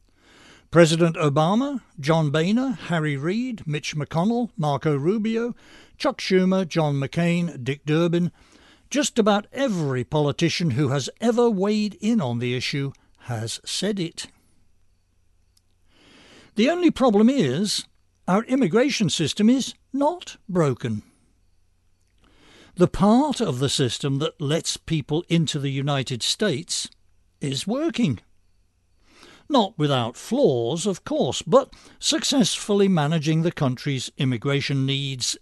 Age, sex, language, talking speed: 60-79, male, English, 115 wpm